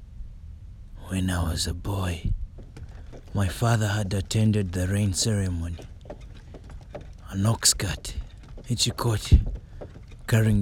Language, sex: English, male